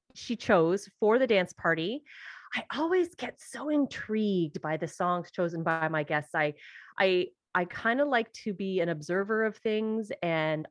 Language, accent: English, American